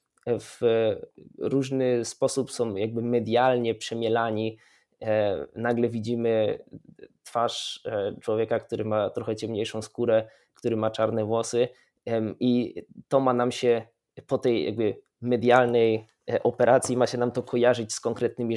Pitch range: 110-135 Hz